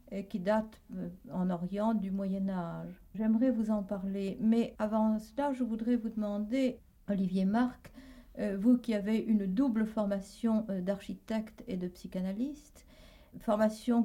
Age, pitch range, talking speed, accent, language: 60-79, 190-235 Hz, 130 wpm, French, French